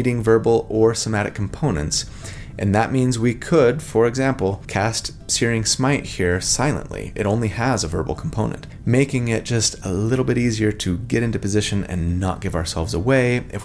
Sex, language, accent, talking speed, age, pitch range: male, English, American, 170 wpm, 30-49, 90-125 Hz